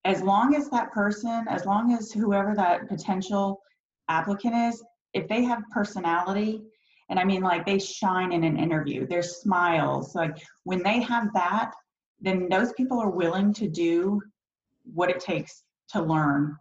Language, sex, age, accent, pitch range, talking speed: English, female, 30-49, American, 155-195 Hz, 165 wpm